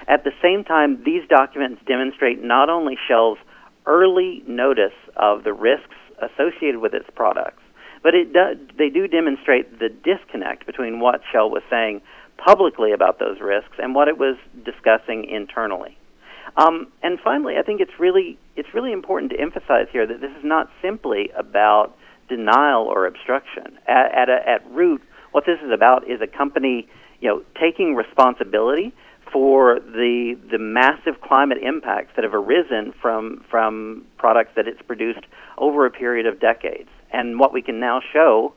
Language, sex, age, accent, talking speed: English, male, 50-69, American, 165 wpm